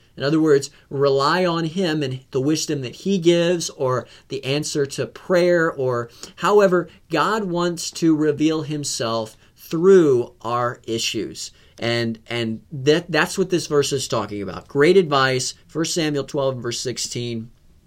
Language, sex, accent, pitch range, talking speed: English, male, American, 120-165 Hz, 150 wpm